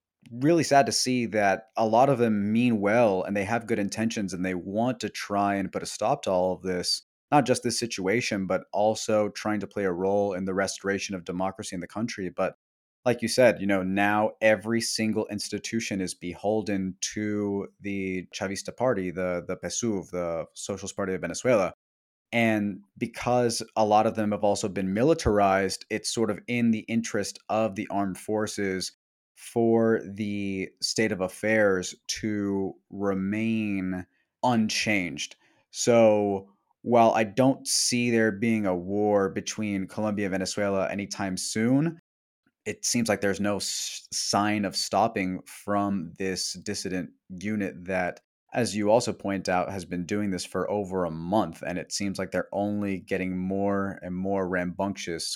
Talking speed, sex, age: 165 wpm, male, 30-49